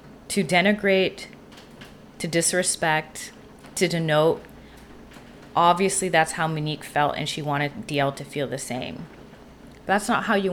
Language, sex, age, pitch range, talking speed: English, female, 20-39, 145-185 Hz, 130 wpm